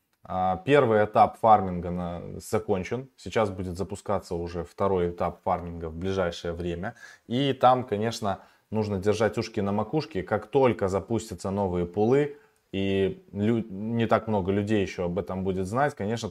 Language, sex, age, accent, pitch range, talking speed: Russian, male, 20-39, native, 90-110 Hz, 140 wpm